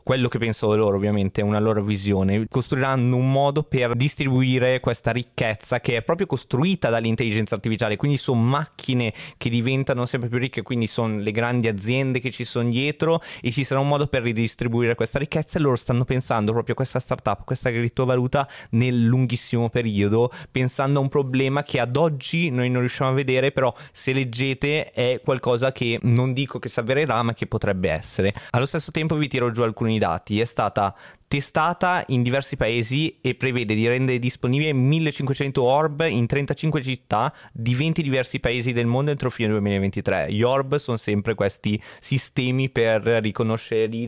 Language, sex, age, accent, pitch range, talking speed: Italian, male, 20-39, native, 115-140 Hz, 180 wpm